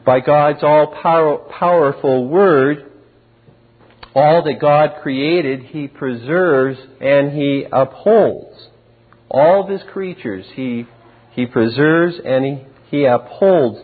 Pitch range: 115-140 Hz